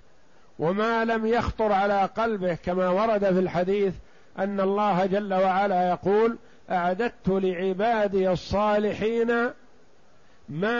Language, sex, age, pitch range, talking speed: Arabic, male, 50-69, 180-225 Hz, 100 wpm